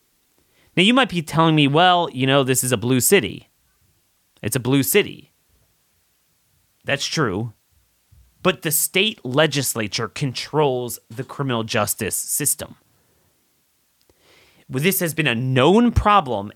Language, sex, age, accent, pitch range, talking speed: English, male, 30-49, American, 125-185 Hz, 125 wpm